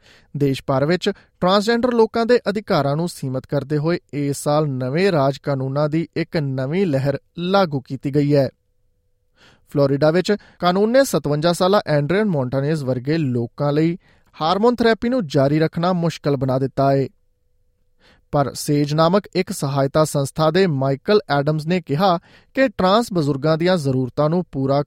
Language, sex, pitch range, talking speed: Punjabi, male, 110-165 Hz, 150 wpm